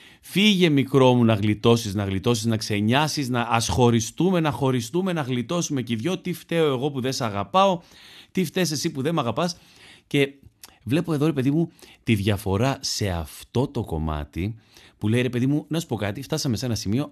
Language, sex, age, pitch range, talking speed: Greek, male, 30-49, 105-145 Hz, 200 wpm